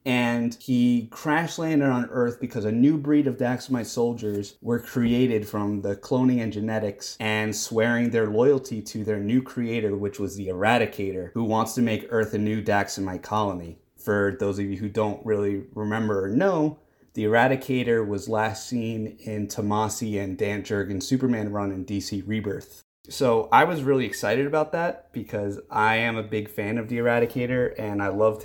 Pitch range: 105-125 Hz